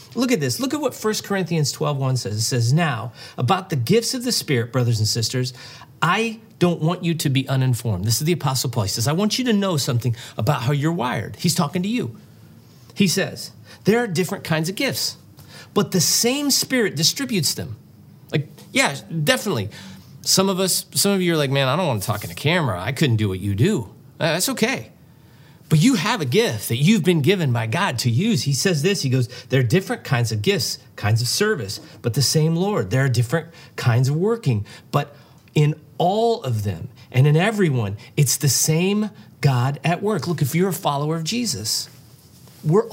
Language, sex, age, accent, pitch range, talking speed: English, male, 40-59, American, 125-185 Hz, 210 wpm